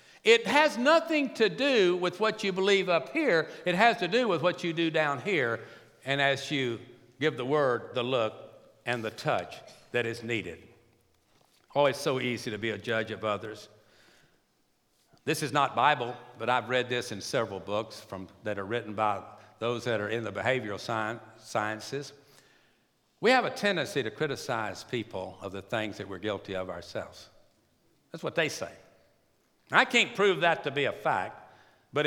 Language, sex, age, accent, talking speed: English, male, 60-79, American, 175 wpm